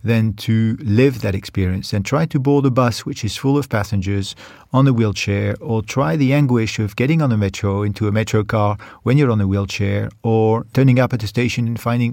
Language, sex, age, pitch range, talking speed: French, male, 40-59, 105-135 Hz, 225 wpm